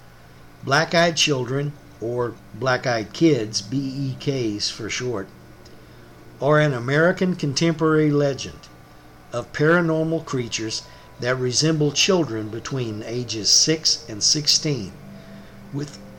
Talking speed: 95 wpm